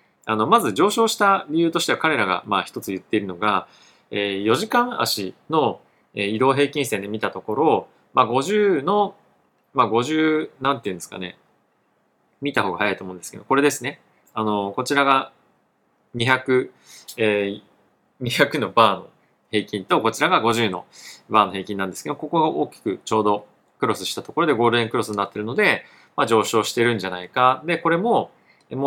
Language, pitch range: Japanese, 105-140 Hz